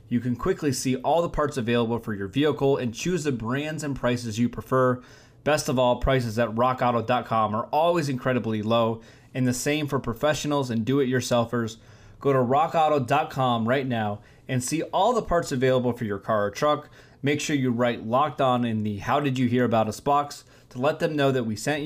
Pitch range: 115-140 Hz